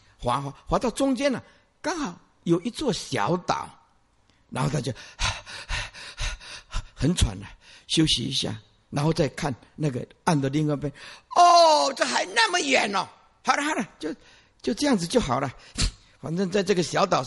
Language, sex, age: Chinese, male, 50-69